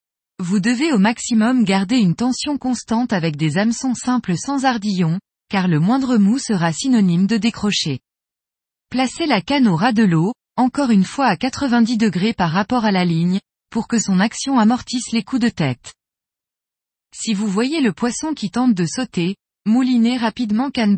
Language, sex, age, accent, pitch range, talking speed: French, female, 20-39, French, 185-250 Hz, 175 wpm